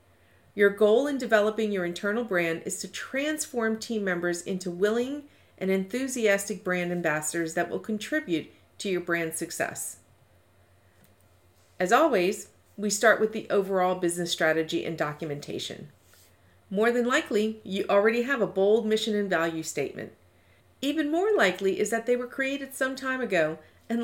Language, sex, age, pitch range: English, female, 40-59, 175-235 Hz